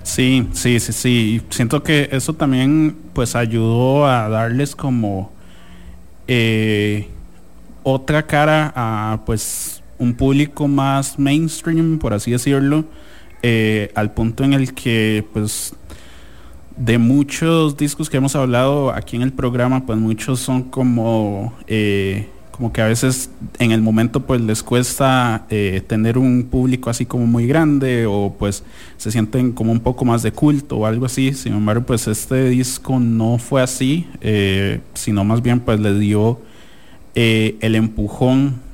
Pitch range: 105-130 Hz